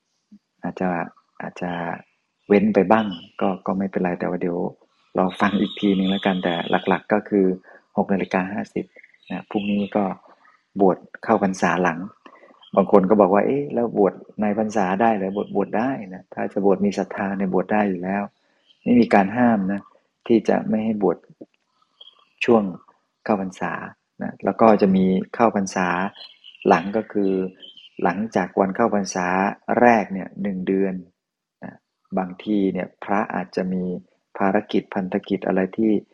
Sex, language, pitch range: male, Thai, 95-105 Hz